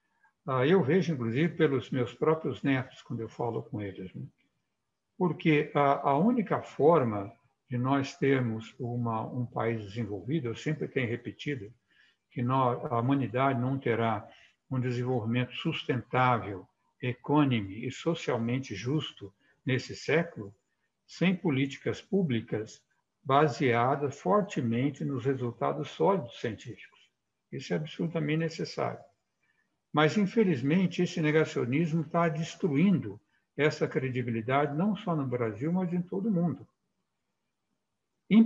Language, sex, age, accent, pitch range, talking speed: Portuguese, male, 60-79, Brazilian, 120-160 Hz, 110 wpm